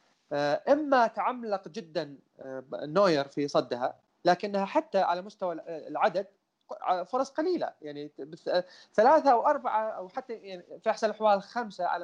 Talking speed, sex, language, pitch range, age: 120 wpm, male, Arabic, 160-215 Hz, 30-49